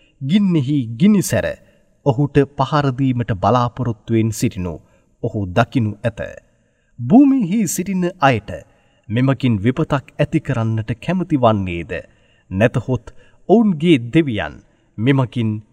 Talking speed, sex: 90 wpm, male